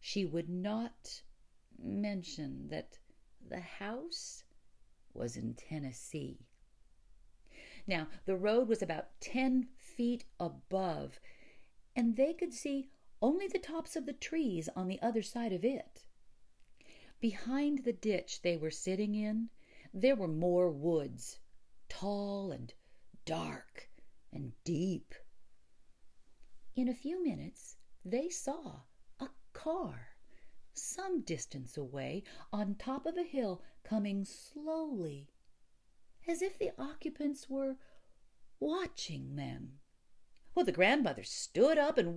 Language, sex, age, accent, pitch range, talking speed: English, female, 50-69, American, 185-285 Hz, 115 wpm